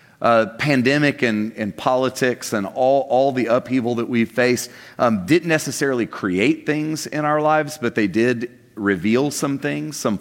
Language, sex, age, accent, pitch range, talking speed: English, male, 40-59, American, 110-135 Hz, 165 wpm